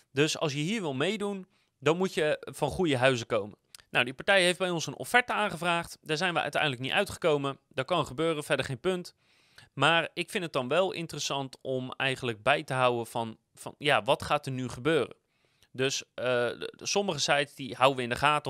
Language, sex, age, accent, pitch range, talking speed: Dutch, male, 30-49, Dutch, 130-180 Hz, 205 wpm